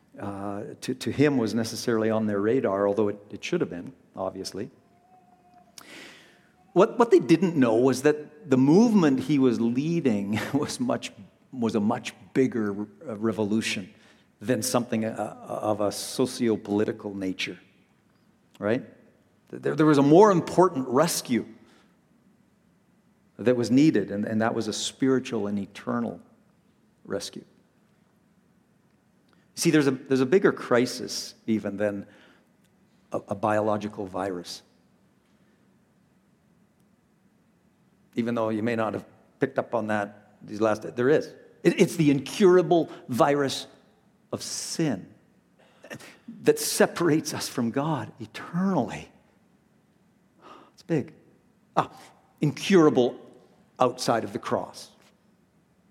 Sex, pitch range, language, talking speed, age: male, 105-165 Hz, English, 120 wpm, 50-69